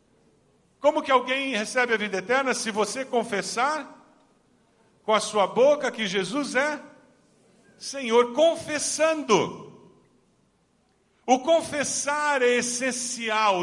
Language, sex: Portuguese, male